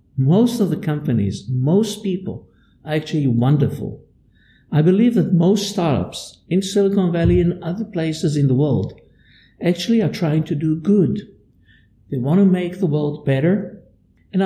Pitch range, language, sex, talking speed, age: 130-175 Hz, English, male, 155 wpm, 60-79